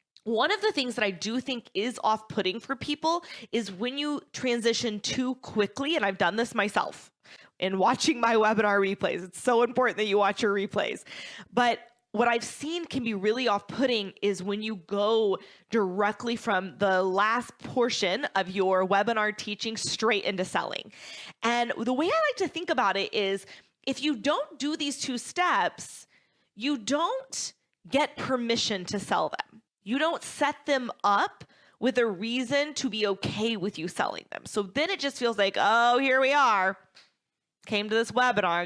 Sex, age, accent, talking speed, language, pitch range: female, 20-39, American, 175 wpm, English, 200-260 Hz